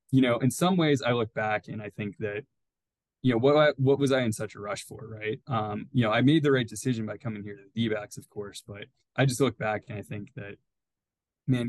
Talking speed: 265 wpm